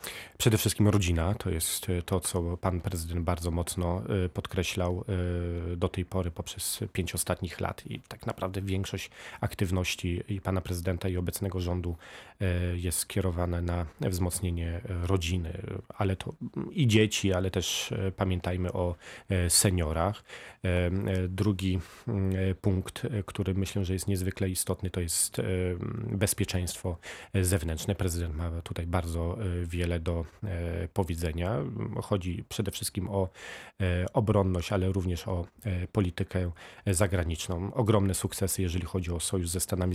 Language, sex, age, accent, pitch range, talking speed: Polish, male, 30-49, native, 90-100 Hz, 120 wpm